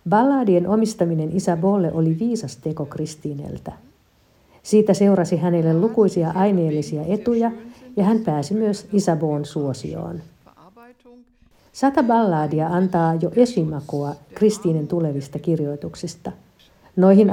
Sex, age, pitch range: female, 50-69, 155-200 Hz